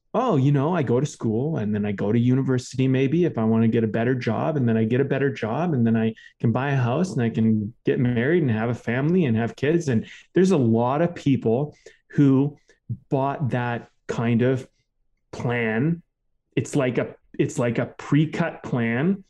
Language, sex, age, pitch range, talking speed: English, male, 30-49, 120-155 Hz, 210 wpm